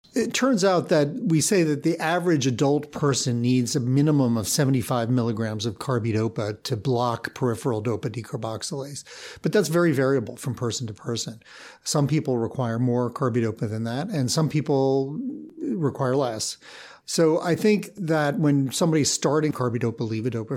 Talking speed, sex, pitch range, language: 155 wpm, male, 120-150 Hz, English